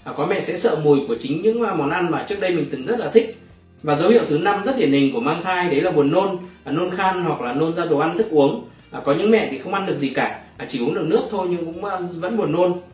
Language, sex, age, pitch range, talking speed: Vietnamese, male, 20-39, 145-200 Hz, 290 wpm